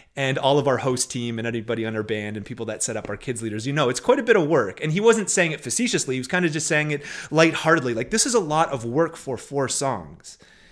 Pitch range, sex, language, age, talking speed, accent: 125-170 Hz, male, English, 30-49, 285 wpm, American